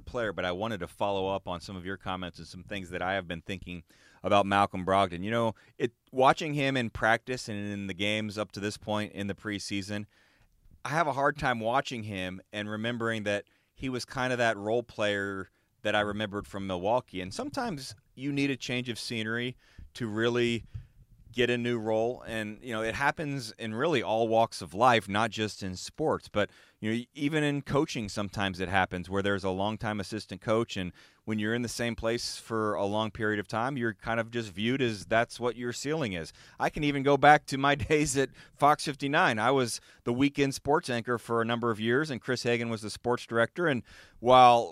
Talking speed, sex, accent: 215 wpm, male, American